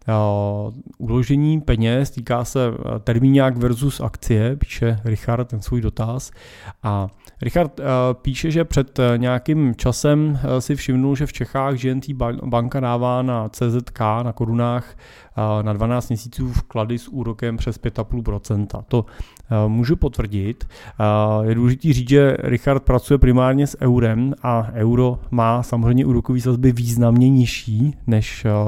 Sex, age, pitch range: male, 30-49, 115-130 Hz